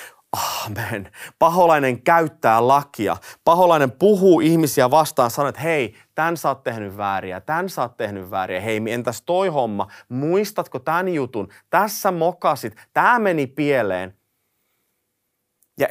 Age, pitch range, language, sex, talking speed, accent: 30-49, 115-170 Hz, Finnish, male, 130 wpm, native